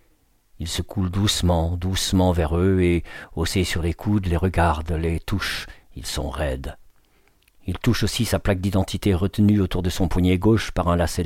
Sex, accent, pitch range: male, French, 90-110 Hz